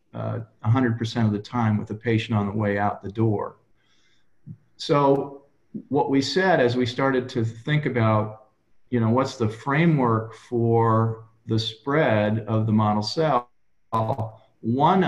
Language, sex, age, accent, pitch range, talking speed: English, male, 40-59, American, 110-130 Hz, 150 wpm